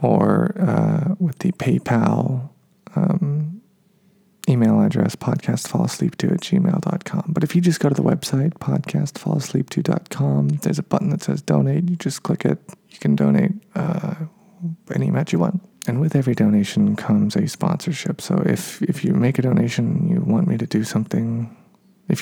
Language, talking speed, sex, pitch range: English, 160 wpm, male, 150-190 Hz